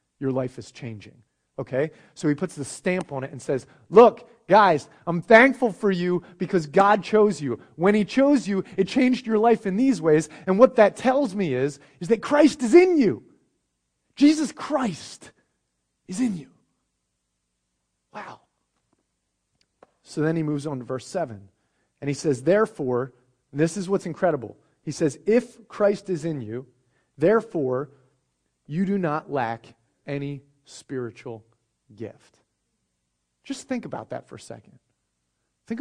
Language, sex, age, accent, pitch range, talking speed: English, male, 30-49, American, 130-200 Hz, 155 wpm